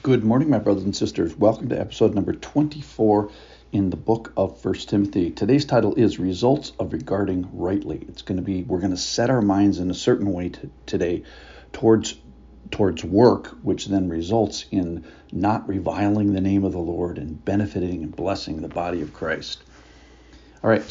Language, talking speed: English, 185 wpm